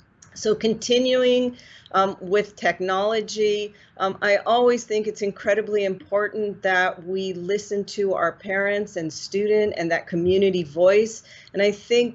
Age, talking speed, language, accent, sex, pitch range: 40-59, 135 wpm, English, American, female, 180-215 Hz